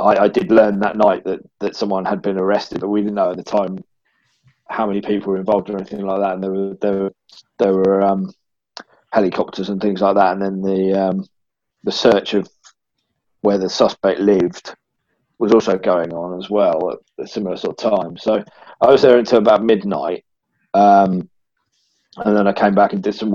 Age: 20-39